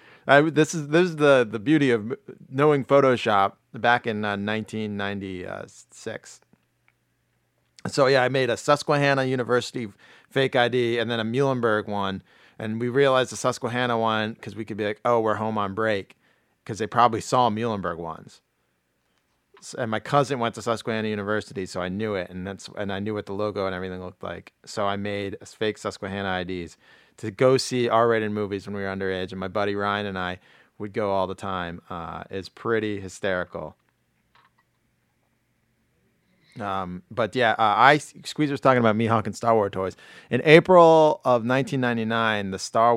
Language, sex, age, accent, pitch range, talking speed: English, male, 40-59, American, 100-120 Hz, 175 wpm